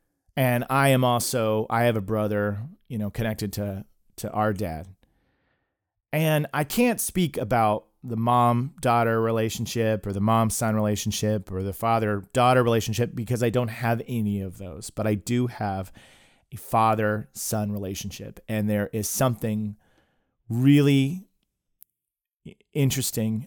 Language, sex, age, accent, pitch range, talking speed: English, male, 30-49, American, 105-125 Hz, 130 wpm